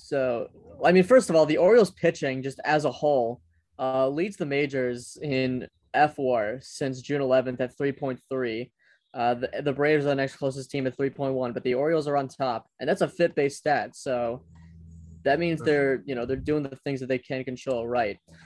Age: 20-39